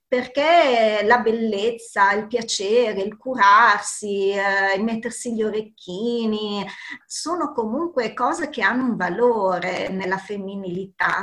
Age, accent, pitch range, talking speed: 40-59, native, 200-255 Hz, 110 wpm